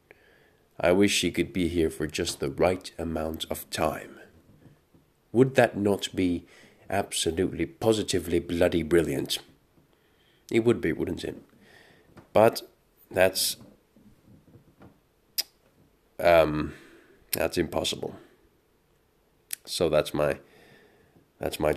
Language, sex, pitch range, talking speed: English, male, 85-110 Hz, 100 wpm